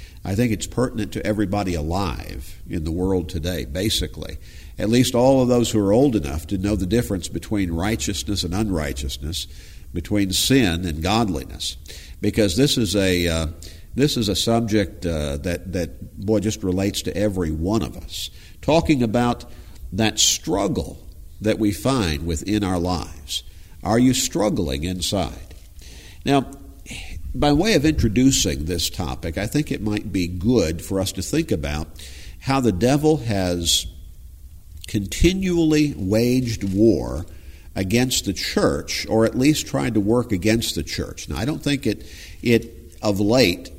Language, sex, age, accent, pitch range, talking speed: English, male, 50-69, American, 85-110 Hz, 155 wpm